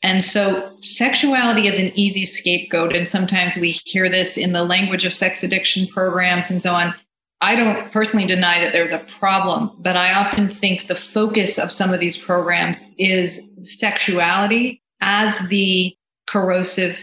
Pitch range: 180-200 Hz